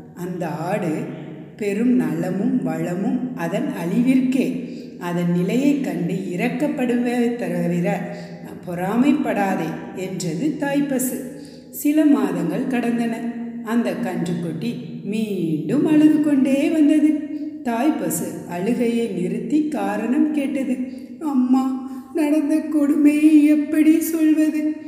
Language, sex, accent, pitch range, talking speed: Tamil, female, native, 245-310 Hz, 85 wpm